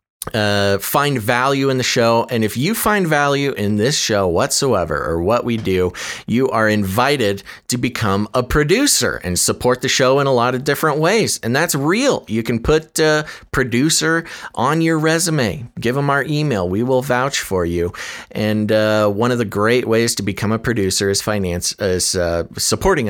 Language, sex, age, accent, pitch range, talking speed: English, male, 30-49, American, 105-140 Hz, 185 wpm